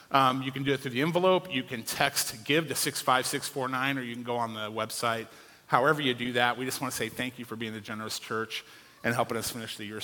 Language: English